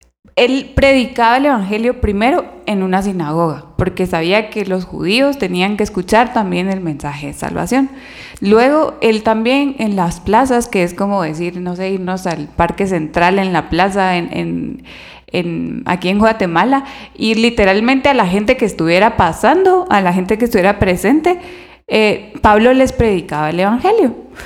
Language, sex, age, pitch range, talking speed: Spanish, female, 20-39, 180-240 Hz, 160 wpm